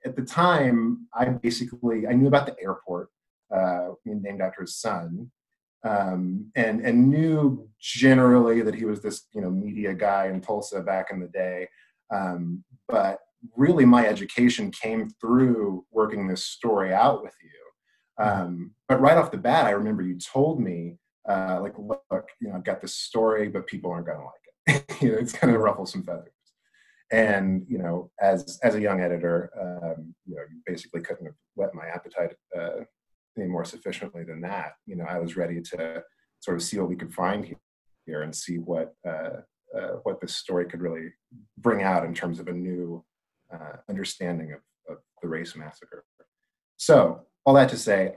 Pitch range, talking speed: 90-125 Hz, 190 wpm